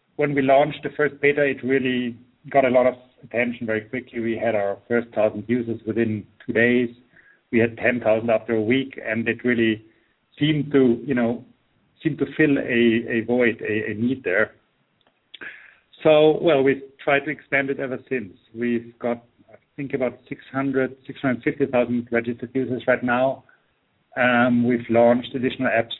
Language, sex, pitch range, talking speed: English, male, 120-140 Hz, 165 wpm